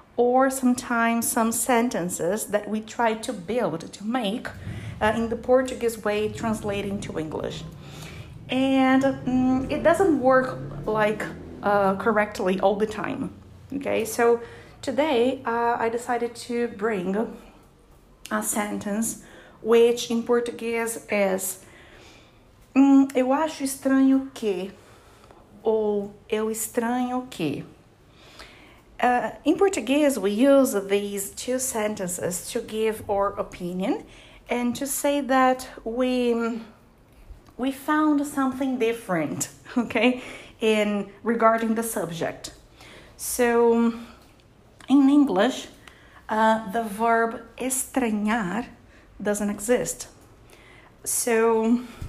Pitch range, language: 210-255 Hz, English